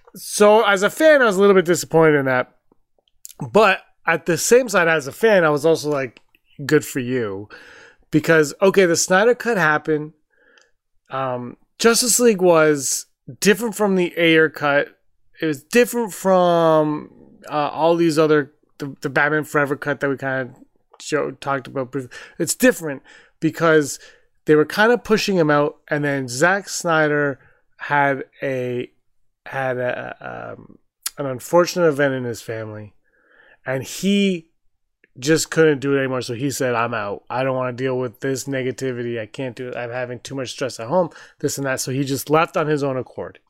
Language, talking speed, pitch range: English, 175 wpm, 135-180 Hz